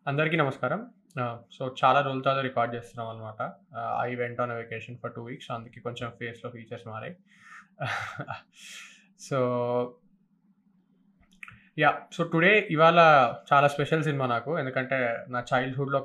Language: Telugu